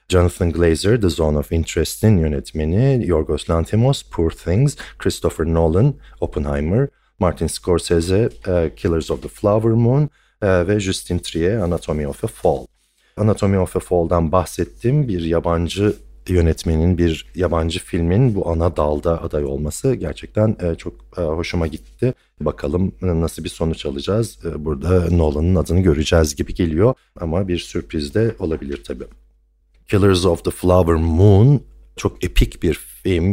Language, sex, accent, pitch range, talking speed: Turkish, male, native, 80-100 Hz, 135 wpm